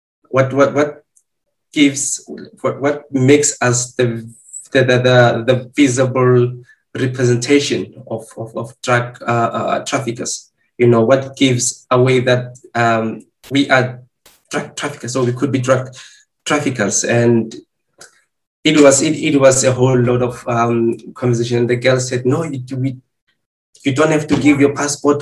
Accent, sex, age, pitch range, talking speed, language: South African, male, 20-39, 120-145 Hz, 160 wpm, English